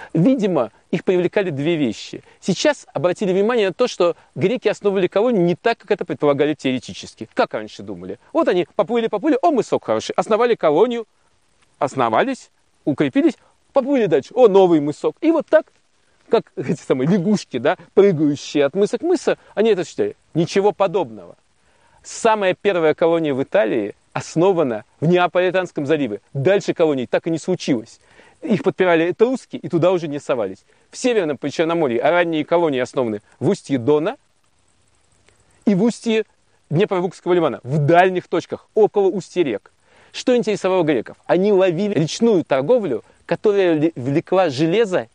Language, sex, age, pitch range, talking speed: Russian, male, 40-59, 150-205 Hz, 150 wpm